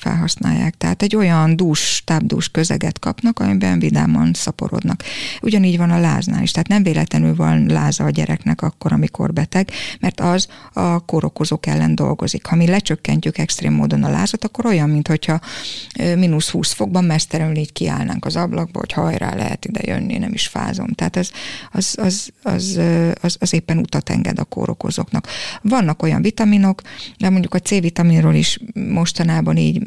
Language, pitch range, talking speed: Hungarian, 155-190 Hz, 160 wpm